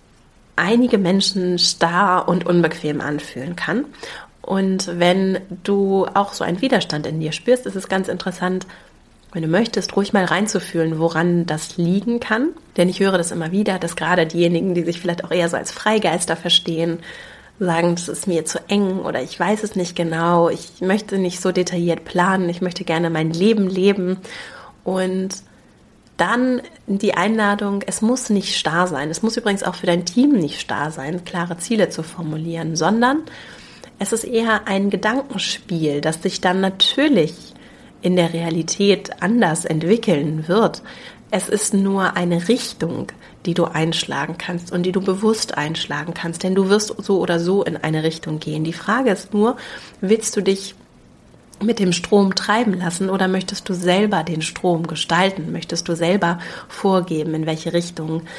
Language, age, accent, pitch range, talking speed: German, 30-49, German, 165-200 Hz, 170 wpm